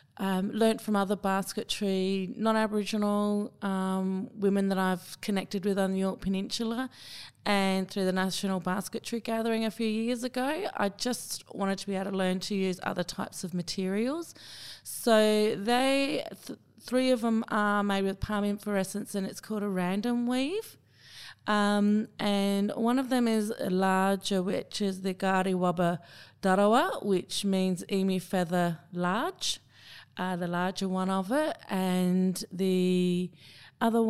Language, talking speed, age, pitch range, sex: English, 150 wpm, 30-49, 185-215 Hz, female